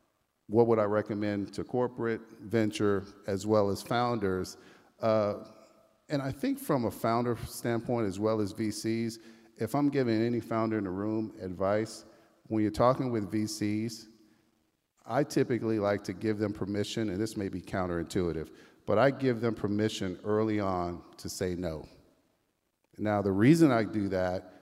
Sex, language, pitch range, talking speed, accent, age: male, English, 105-125 Hz, 160 wpm, American, 50-69